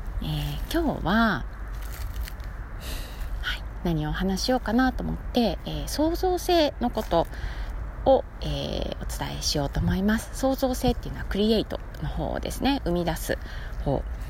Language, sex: Japanese, female